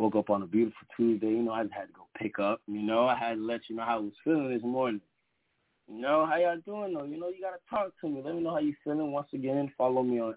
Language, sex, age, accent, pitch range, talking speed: English, male, 20-39, American, 105-130 Hz, 315 wpm